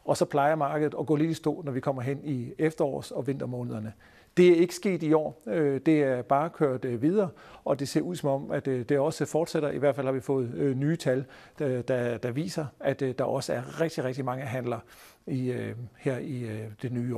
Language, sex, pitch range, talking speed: Danish, male, 130-155 Hz, 220 wpm